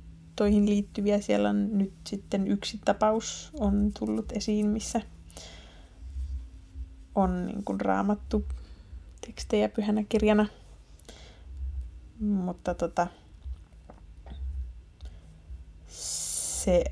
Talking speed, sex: 70 wpm, female